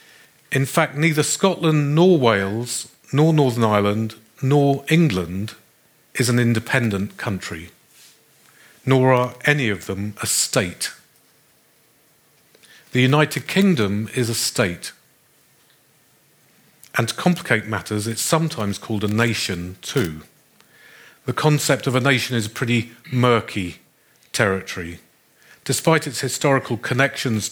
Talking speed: 115 wpm